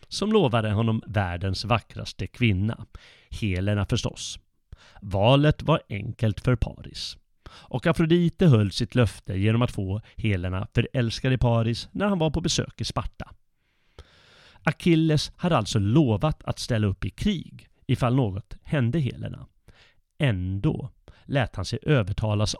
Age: 30-49